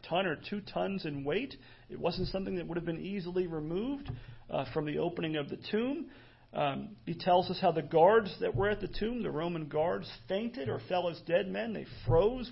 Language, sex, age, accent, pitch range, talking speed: English, male, 40-59, American, 150-185 Hz, 215 wpm